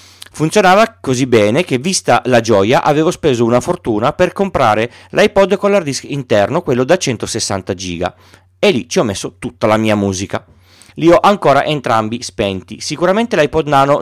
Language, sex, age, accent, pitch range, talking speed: Italian, male, 40-59, native, 100-155 Hz, 165 wpm